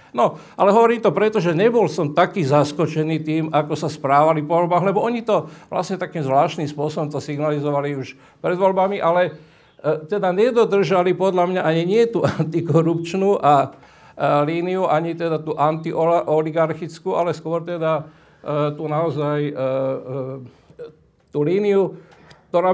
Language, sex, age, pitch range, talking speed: Slovak, male, 50-69, 145-175 Hz, 150 wpm